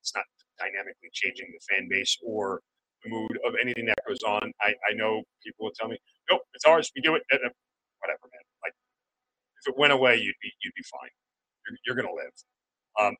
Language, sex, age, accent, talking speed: English, male, 40-59, American, 210 wpm